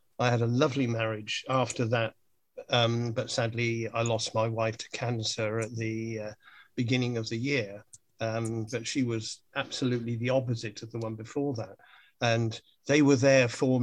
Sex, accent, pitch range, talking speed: male, British, 115-130 Hz, 175 wpm